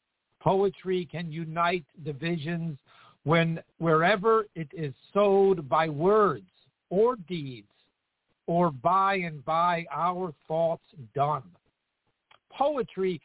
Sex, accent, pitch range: male, American, 160-225 Hz